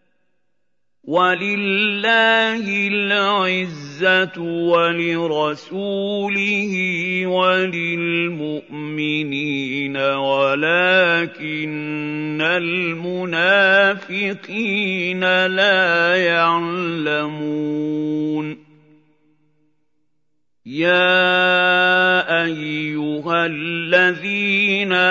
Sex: male